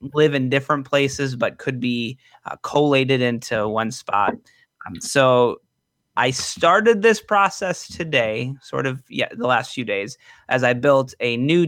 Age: 30-49